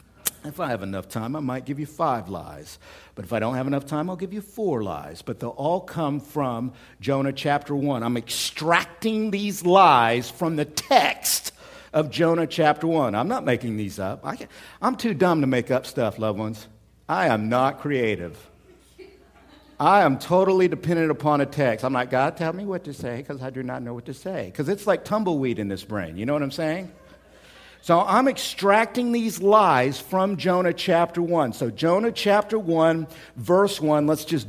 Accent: American